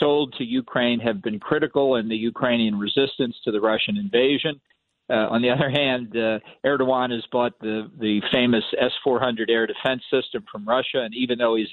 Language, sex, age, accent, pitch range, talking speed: English, male, 50-69, American, 115-135 Hz, 185 wpm